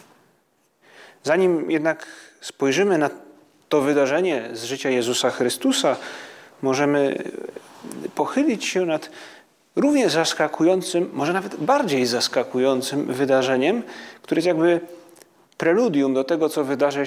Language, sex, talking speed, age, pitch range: Polish, male, 100 wpm, 30-49, 130-180 Hz